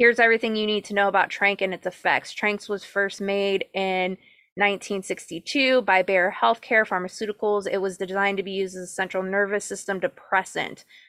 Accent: American